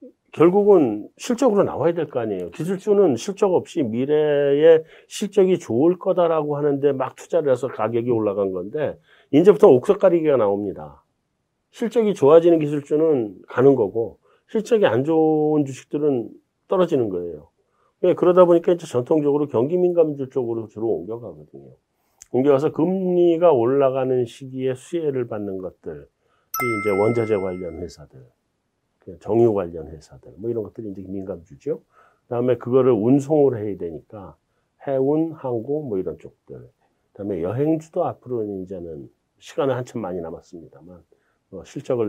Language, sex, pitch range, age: Korean, male, 115-170 Hz, 40-59